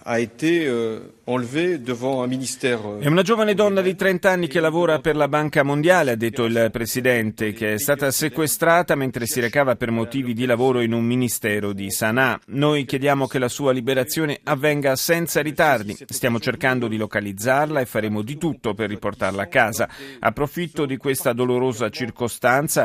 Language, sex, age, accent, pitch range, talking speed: Italian, male, 40-59, native, 110-140 Hz, 155 wpm